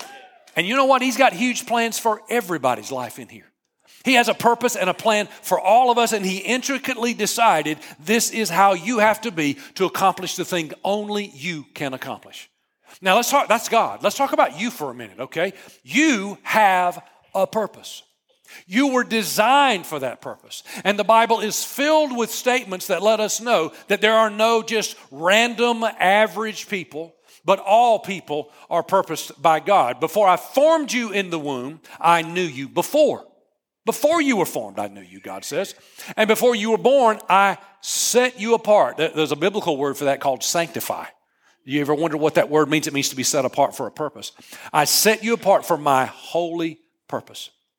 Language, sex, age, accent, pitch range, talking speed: English, male, 40-59, American, 165-230 Hz, 190 wpm